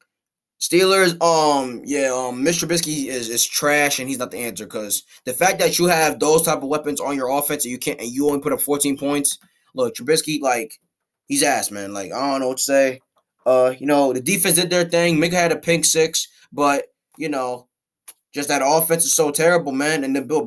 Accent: American